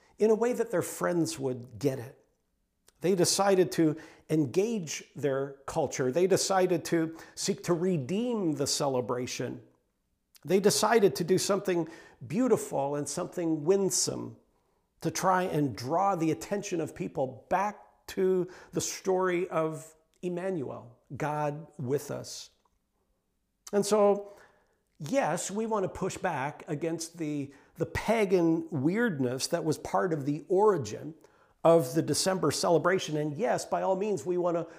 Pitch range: 150-190 Hz